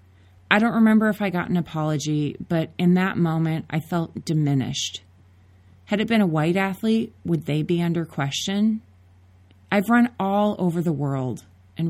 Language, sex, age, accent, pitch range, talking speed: English, female, 30-49, American, 130-185 Hz, 165 wpm